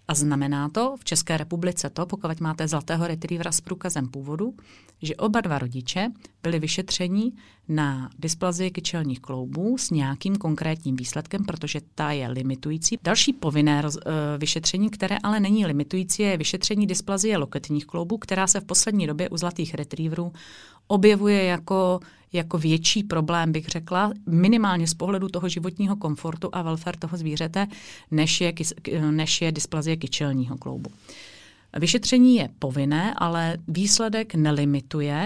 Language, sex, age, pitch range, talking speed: Czech, female, 30-49, 155-195 Hz, 145 wpm